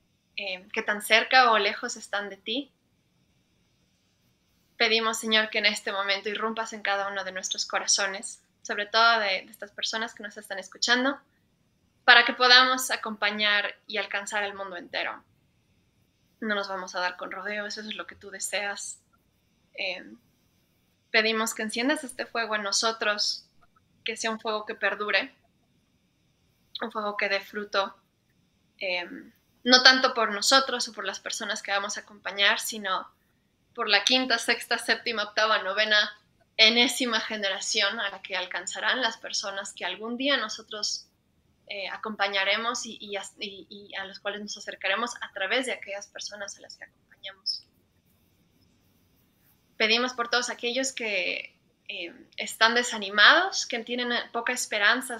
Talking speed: 150 wpm